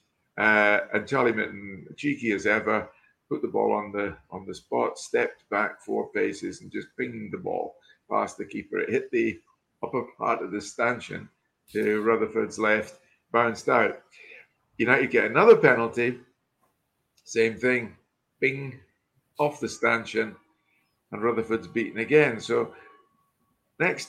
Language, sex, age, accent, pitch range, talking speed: English, male, 50-69, British, 110-145 Hz, 140 wpm